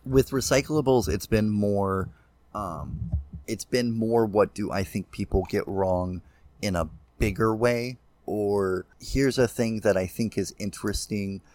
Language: English